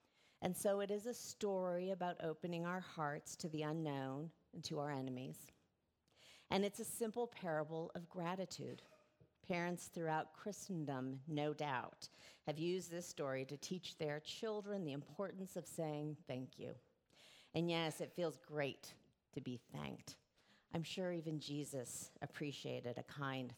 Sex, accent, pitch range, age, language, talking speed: female, American, 145-185 Hz, 40-59, English, 150 wpm